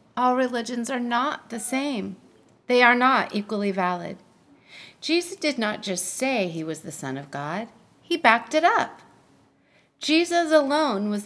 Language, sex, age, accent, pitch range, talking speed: English, female, 40-59, American, 185-250 Hz, 155 wpm